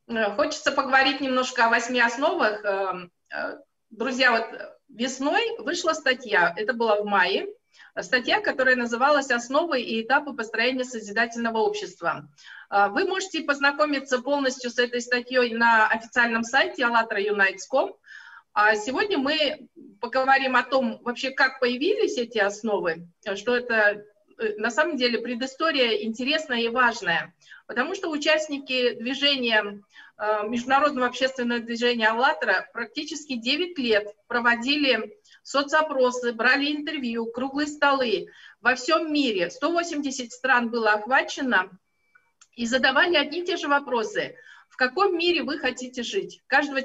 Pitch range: 230-295 Hz